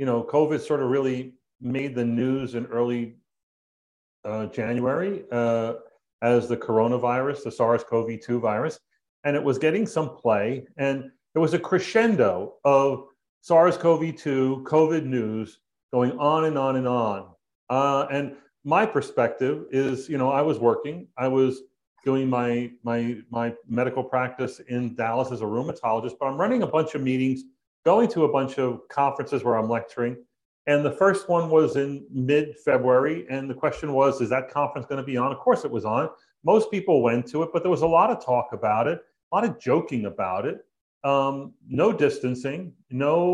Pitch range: 125-155 Hz